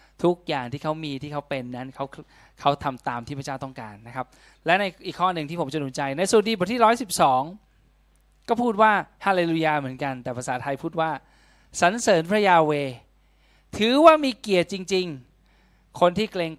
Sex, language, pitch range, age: male, Thai, 125-155 Hz, 20-39